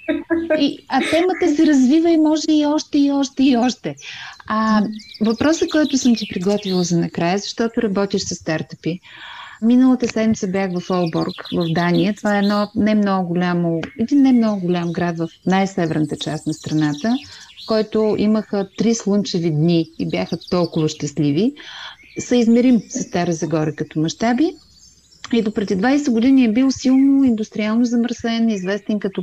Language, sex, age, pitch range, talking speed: Bulgarian, female, 30-49, 180-250 Hz, 155 wpm